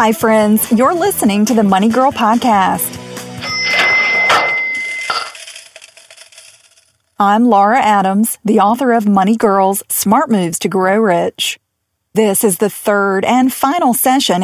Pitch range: 190-255 Hz